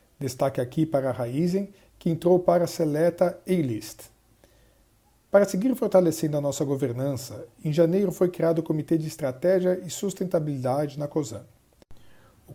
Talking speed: 145 wpm